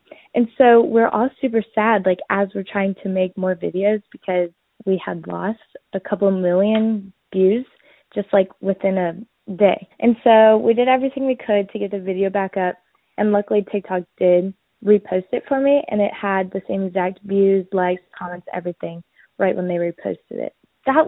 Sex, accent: female, American